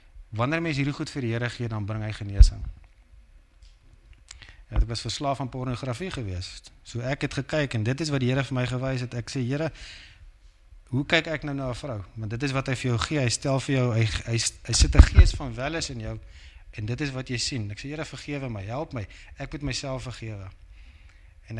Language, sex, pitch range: English, male, 95-140 Hz